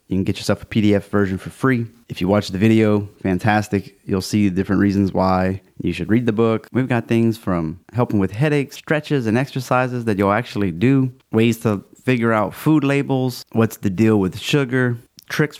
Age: 30-49